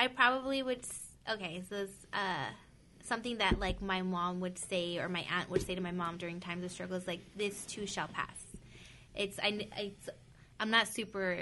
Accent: American